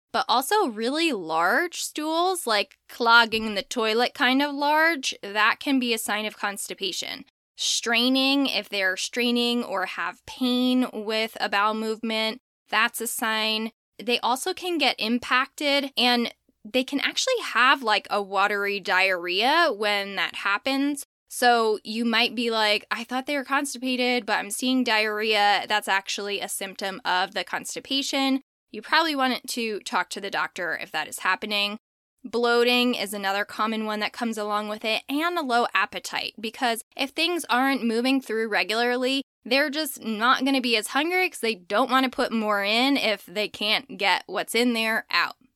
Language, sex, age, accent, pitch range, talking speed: English, female, 10-29, American, 210-270 Hz, 170 wpm